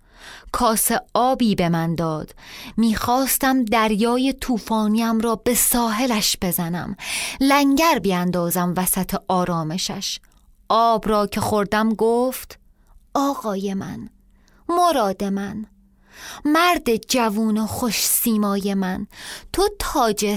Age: 30-49